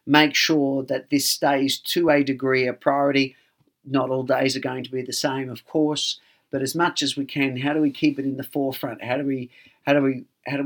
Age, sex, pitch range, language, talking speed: 50-69, male, 130-150 Hz, English, 240 wpm